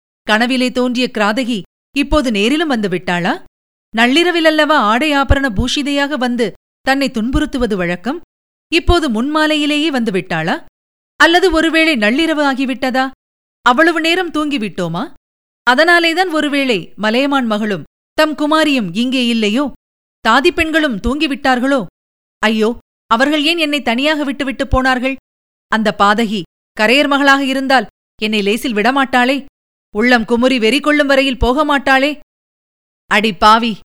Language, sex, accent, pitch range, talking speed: Tamil, female, native, 220-275 Hz, 105 wpm